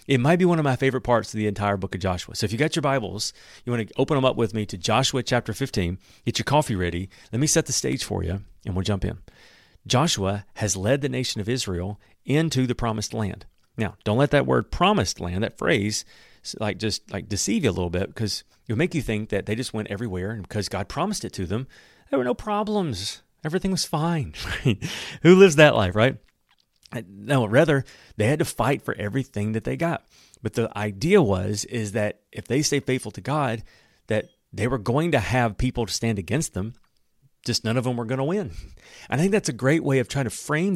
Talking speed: 230 wpm